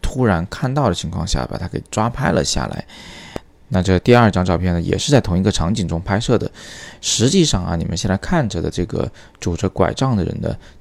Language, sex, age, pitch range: Chinese, male, 20-39, 85-110 Hz